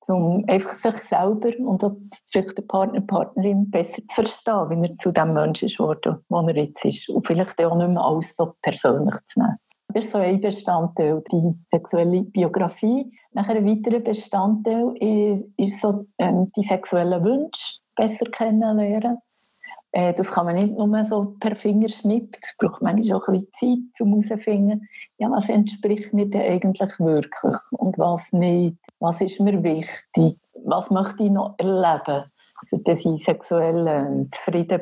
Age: 50-69